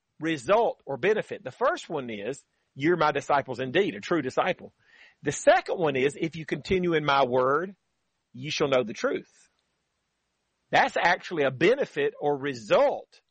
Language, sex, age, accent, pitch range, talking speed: English, male, 40-59, American, 150-200 Hz, 160 wpm